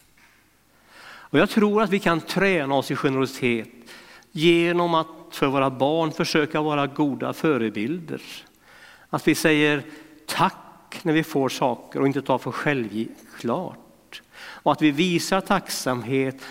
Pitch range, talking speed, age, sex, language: 125-160 Hz, 135 wpm, 60-79, male, Swedish